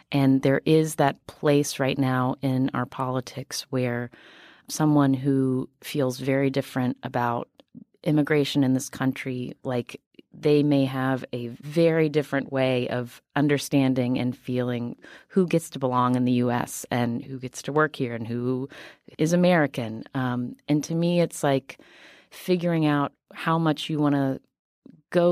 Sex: female